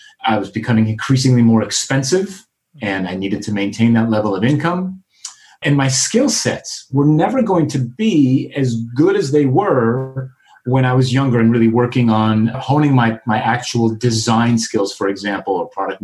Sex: male